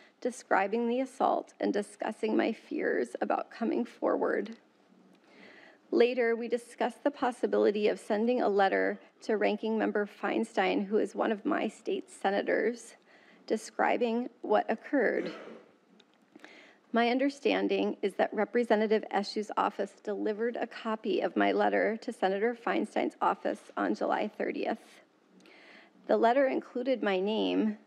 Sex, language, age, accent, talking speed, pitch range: female, English, 30-49, American, 125 wpm, 200-245 Hz